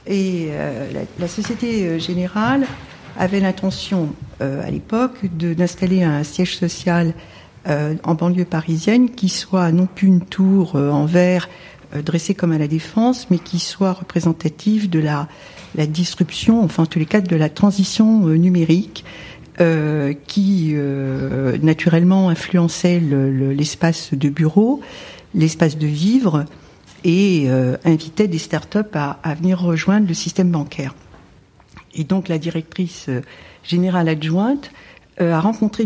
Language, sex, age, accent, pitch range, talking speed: French, female, 60-79, French, 155-190 Hz, 145 wpm